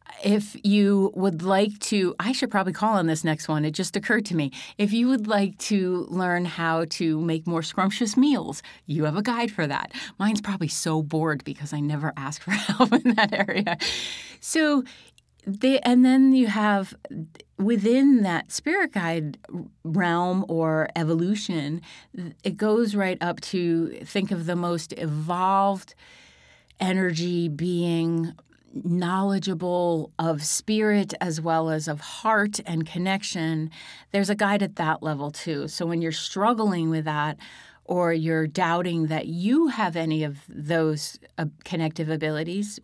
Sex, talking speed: female, 150 wpm